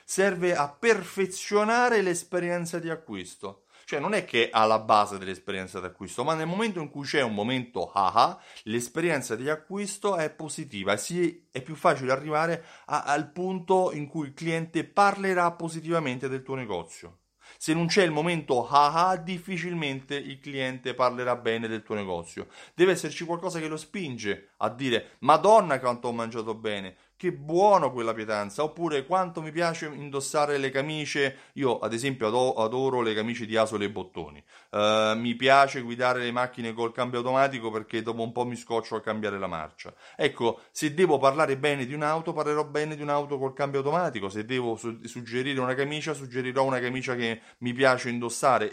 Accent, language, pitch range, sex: native, Italian, 120-165 Hz, male